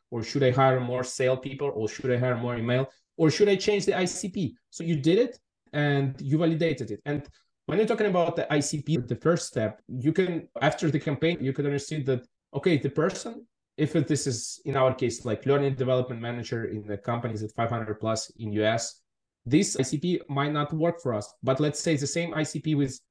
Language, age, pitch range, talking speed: English, 20-39, 125-155 Hz, 210 wpm